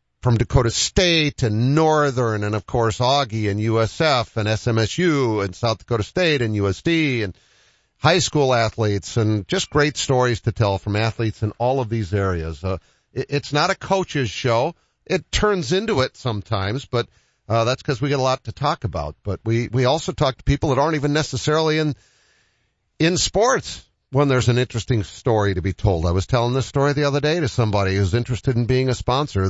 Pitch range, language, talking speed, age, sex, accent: 100-140 Hz, English, 195 wpm, 50-69, male, American